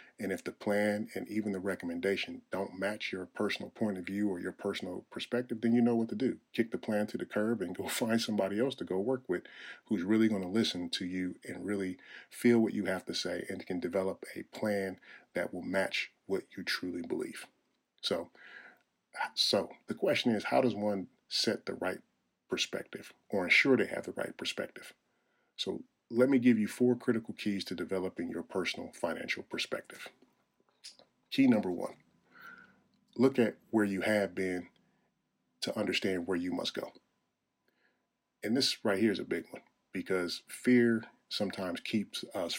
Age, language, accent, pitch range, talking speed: 40-59, English, American, 95-115 Hz, 180 wpm